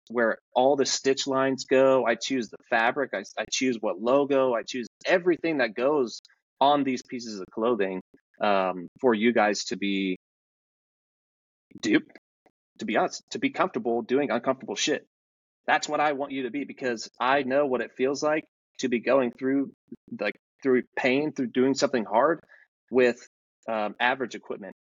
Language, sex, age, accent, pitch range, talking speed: English, male, 30-49, American, 110-135 Hz, 165 wpm